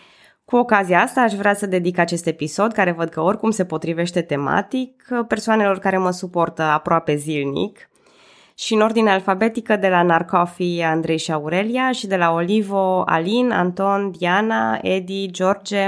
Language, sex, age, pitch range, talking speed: Romanian, female, 20-39, 160-195 Hz, 155 wpm